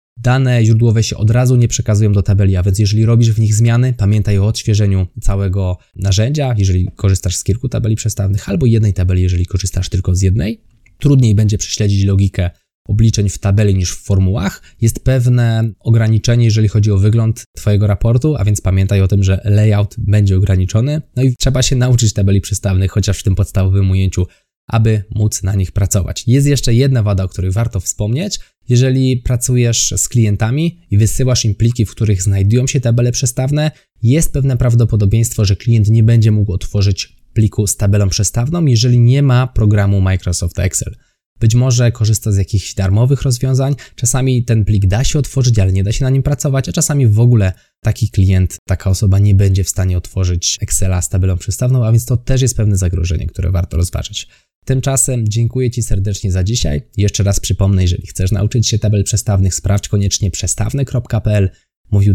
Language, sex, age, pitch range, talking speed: Polish, male, 20-39, 95-120 Hz, 180 wpm